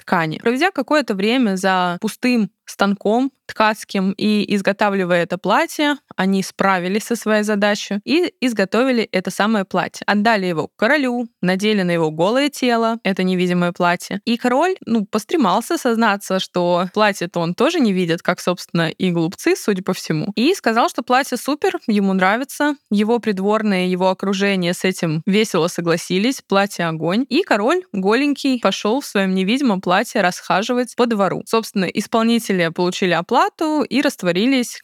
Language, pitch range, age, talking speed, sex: Russian, 185-250 Hz, 20-39, 145 wpm, female